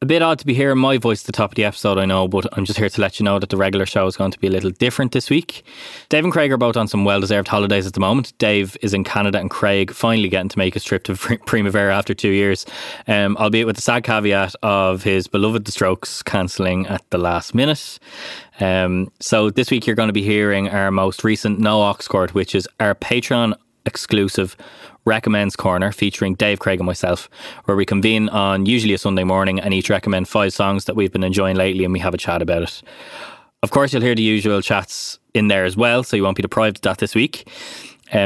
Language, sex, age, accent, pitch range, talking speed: English, male, 20-39, Irish, 95-110 Hz, 240 wpm